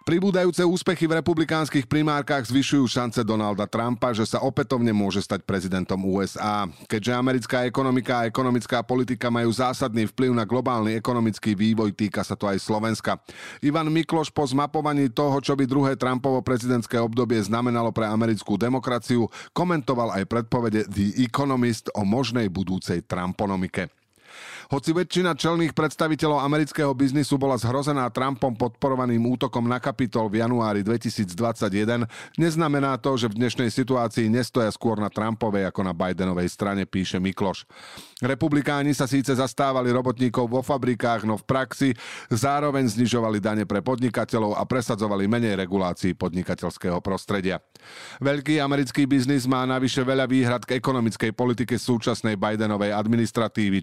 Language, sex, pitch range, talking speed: Slovak, male, 110-135 Hz, 140 wpm